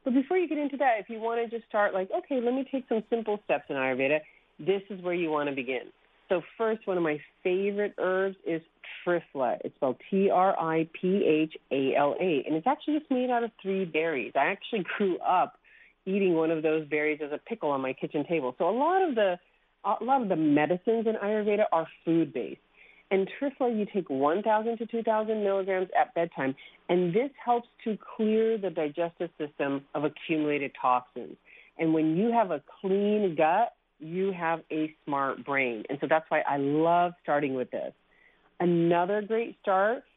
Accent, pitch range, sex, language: American, 155-220 Hz, female, English